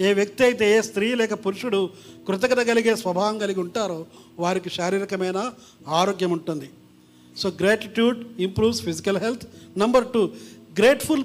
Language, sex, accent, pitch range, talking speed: Telugu, male, native, 180-235 Hz, 130 wpm